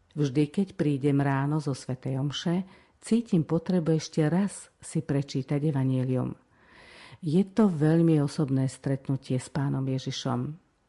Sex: female